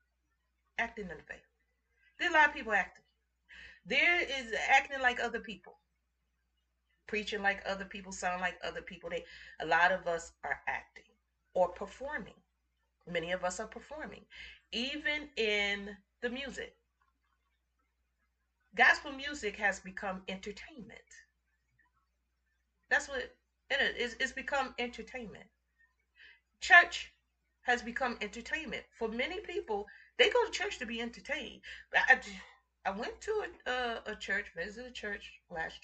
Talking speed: 130 wpm